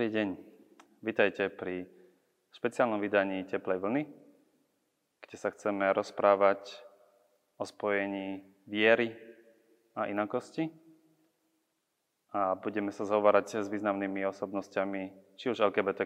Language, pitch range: Slovak, 95-105 Hz